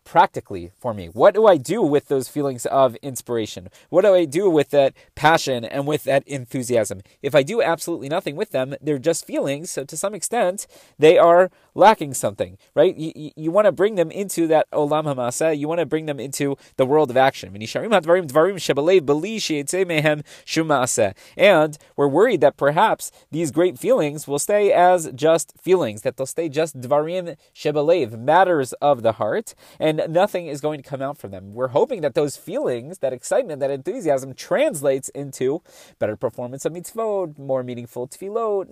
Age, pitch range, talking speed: 20-39, 140-180 Hz, 175 wpm